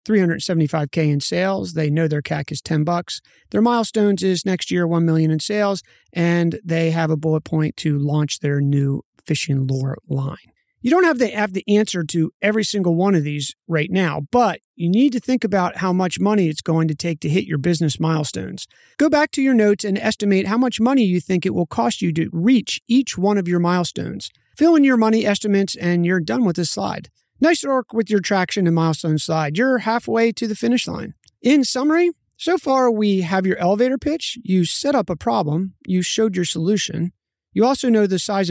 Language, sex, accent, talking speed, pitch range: English, male, American, 210 wpm, 160-225 Hz